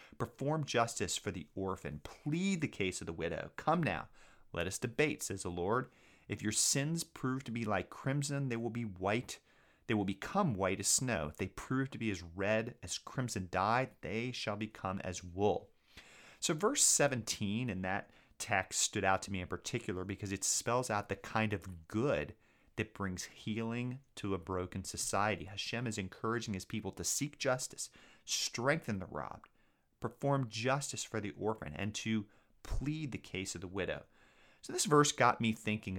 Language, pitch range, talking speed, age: English, 95-120 Hz, 180 wpm, 30-49